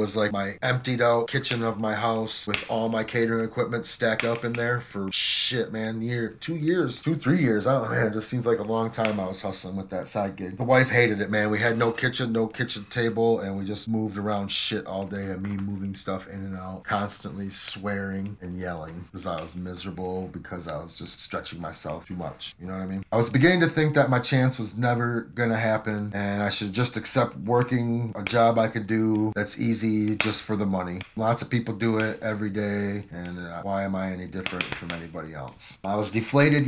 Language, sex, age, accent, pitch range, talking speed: English, male, 30-49, American, 100-120 Hz, 230 wpm